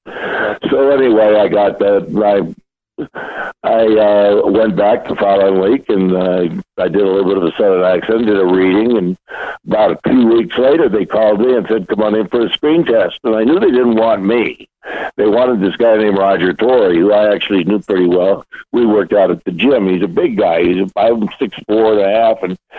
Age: 60-79